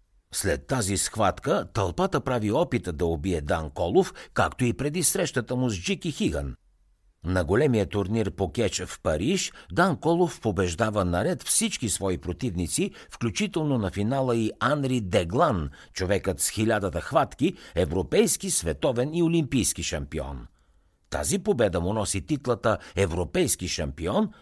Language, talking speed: Bulgarian, 135 wpm